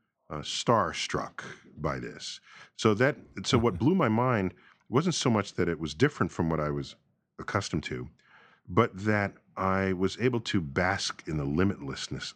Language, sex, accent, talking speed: English, male, American, 170 wpm